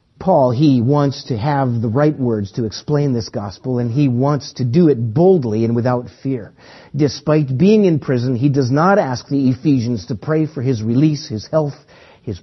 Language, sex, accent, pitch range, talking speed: English, male, American, 135-185 Hz, 195 wpm